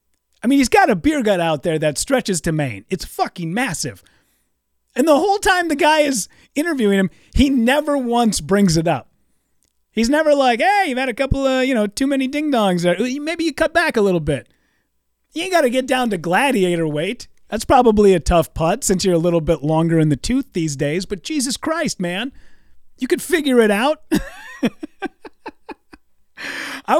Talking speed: 195 wpm